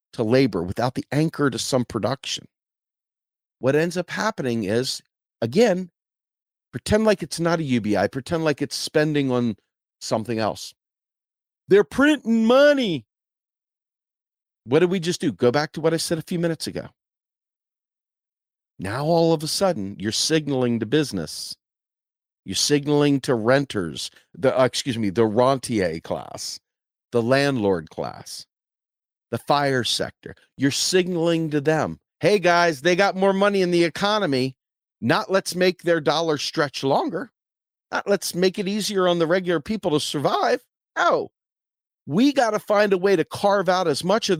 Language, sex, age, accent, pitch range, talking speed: English, male, 40-59, American, 125-180 Hz, 155 wpm